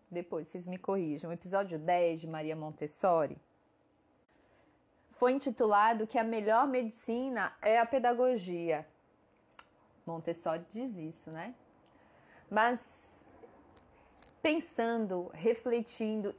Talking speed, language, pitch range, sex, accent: 95 wpm, Portuguese, 180-245 Hz, female, Brazilian